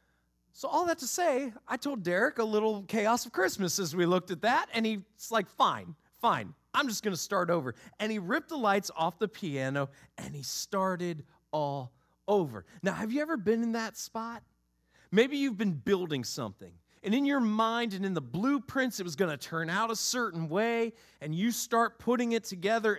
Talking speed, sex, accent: 205 wpm, male, American